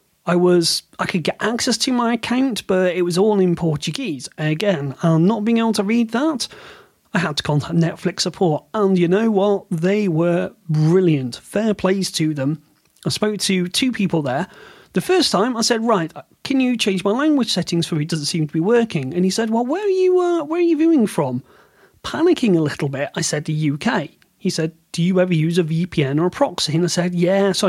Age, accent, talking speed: 40-59, British, 230 wpm